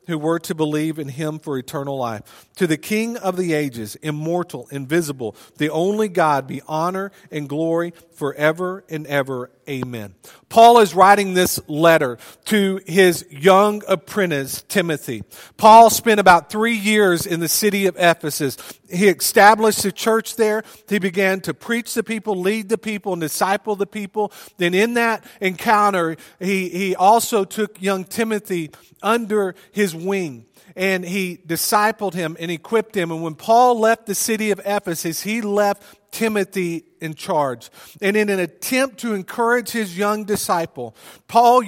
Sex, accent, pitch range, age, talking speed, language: male, American, 155-210 Hz, 40-59, 155 wpm, English